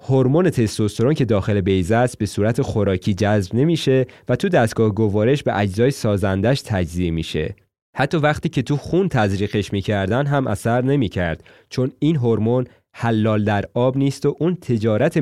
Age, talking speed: 30-49, 160 wpm